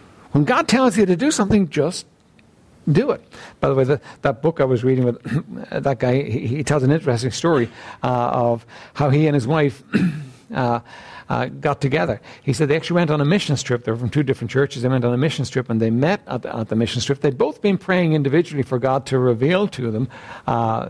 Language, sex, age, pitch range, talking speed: English, male, 60-79, 125-180 Hz, 235 wpm